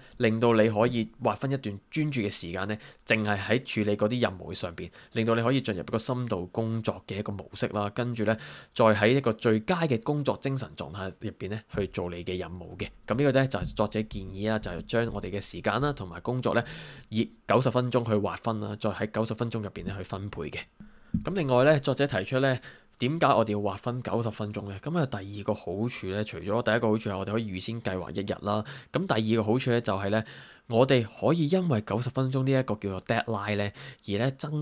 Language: Chinese